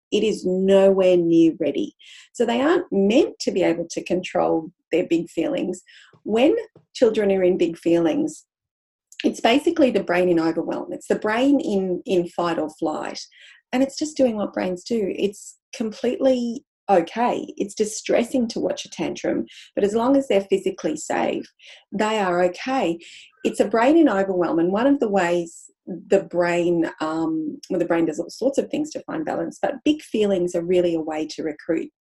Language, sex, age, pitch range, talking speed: English, female, 30-49, 175-260 Hz, 180 wpm